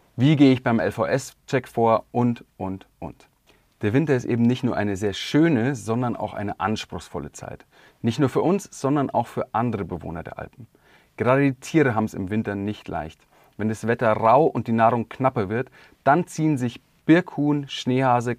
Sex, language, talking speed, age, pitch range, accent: male, German, 185 wpm, 30-49, 105-135 Hz, German